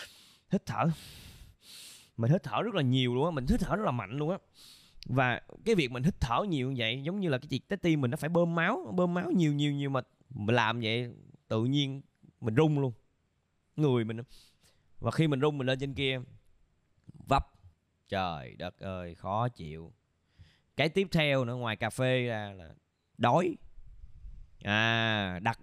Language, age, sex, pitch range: Vietnamese, 20-39, male, 105-150 Hz